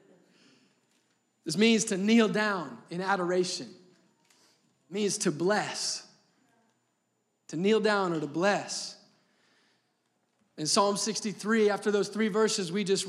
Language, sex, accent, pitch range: English, male, American, 175-215 Hz